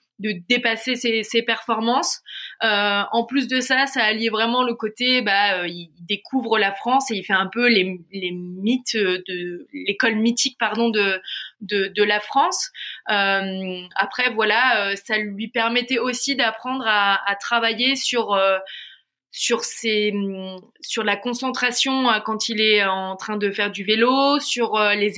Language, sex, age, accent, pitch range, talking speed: French, female, 20-39, French, 200-240 Hz, 155 wpm